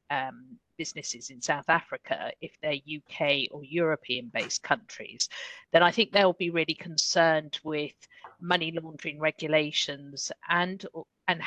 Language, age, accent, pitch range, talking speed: English, 50-69, British, 145-180 Hz, 130 wpm